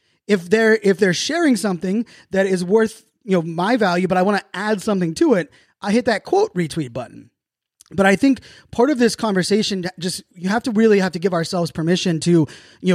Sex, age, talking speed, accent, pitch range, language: male, 20-39, 215 wpm, American, 170-210 Hz, English